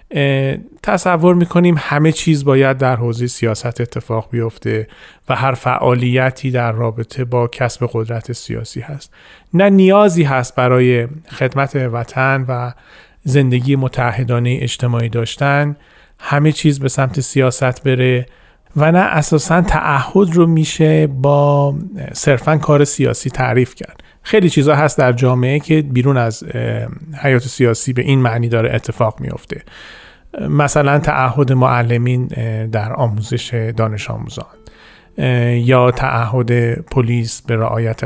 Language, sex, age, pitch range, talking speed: Persian, male, 40-59, 120-150 Hz, 120 wpm